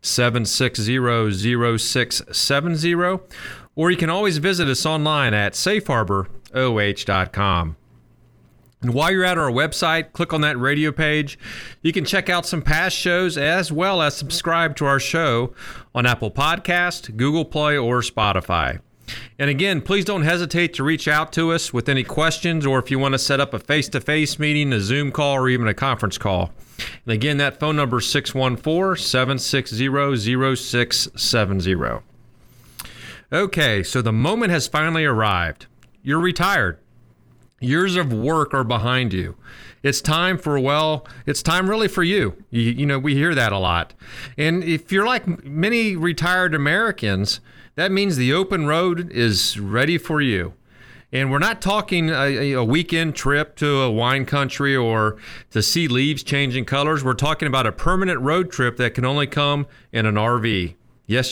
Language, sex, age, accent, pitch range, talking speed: English, male, 40-59, American, 120-165 Hz, 160 wpm